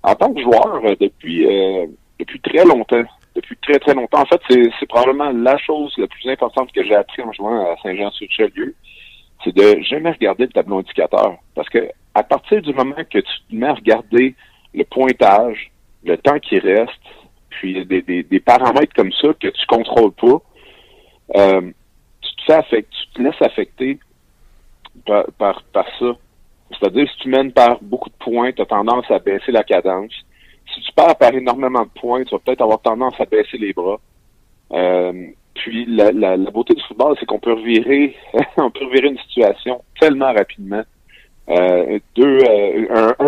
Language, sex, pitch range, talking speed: French, male, 105-145 Hz, 190 wpm